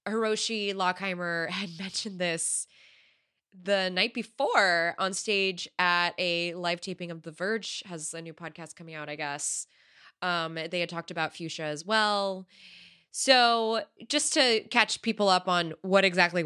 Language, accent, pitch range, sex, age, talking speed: English, American, 160-195 Hz, female, 20-39, 155 wpm